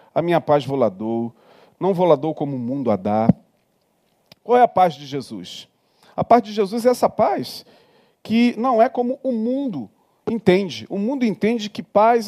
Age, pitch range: 40-59, 145-195 Hz